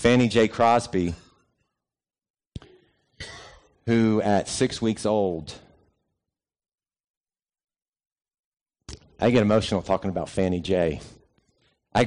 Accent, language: American, English